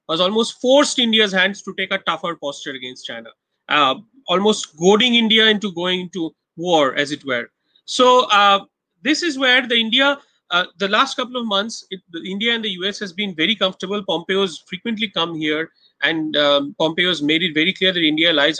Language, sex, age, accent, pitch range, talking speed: English, male, 30-49, Indian, 170-230 Hz, 185 wpm